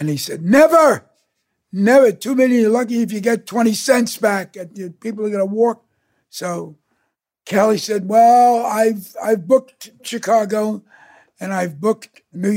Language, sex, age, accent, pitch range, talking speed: English, male, 60-79, American, 180-230 Hz, 160 wpm